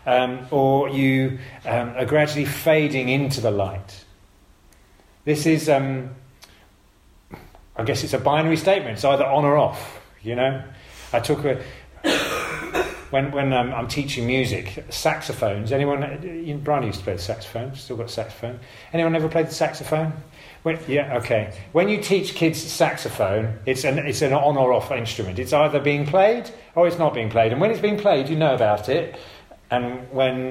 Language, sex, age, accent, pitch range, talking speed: English, male, 40-59, British, 115-155 Hz, 165 wpm